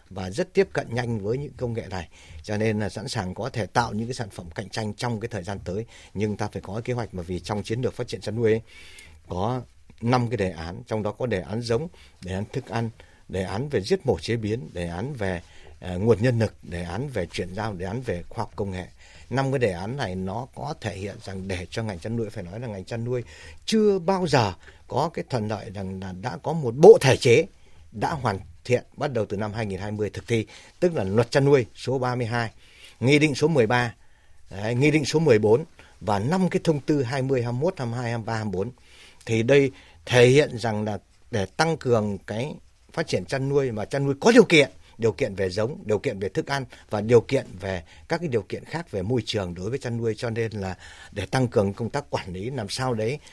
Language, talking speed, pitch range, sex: Vietnamese, 245 wpm, 95-125 Hz, male